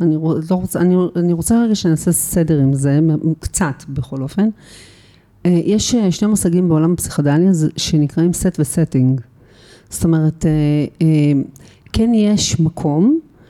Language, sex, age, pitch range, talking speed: Hebrew, female, 40-59, 150-190 Hz, 120 wpm